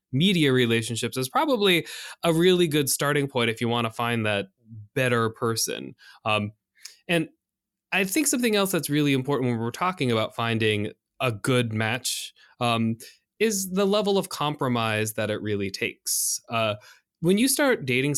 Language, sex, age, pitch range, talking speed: English, male, 20-39, 115-165 Hz, 160 wpm